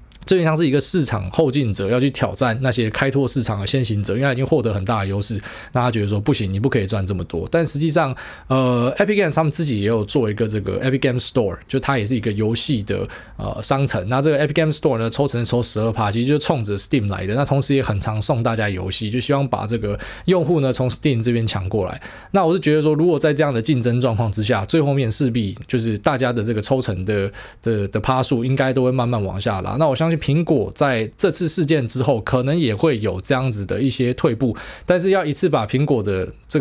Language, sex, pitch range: Chinese, male, 110-145 Hz